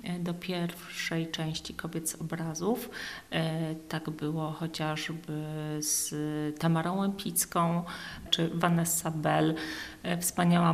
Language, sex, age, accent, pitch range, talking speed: Polish, female, 40-59, native, 165-190 Hz, 90 wpm